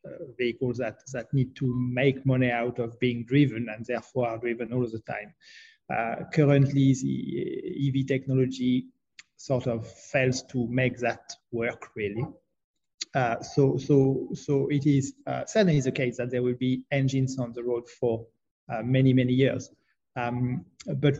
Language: English